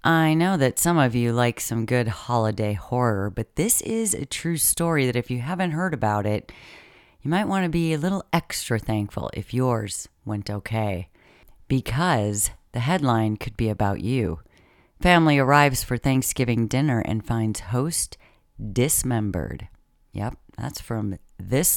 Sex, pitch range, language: female, 105-140 Hz, English